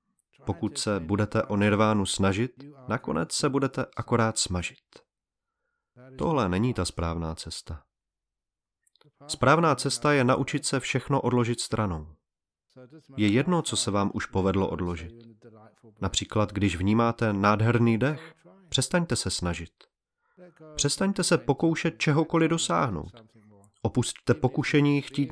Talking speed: 115 wpm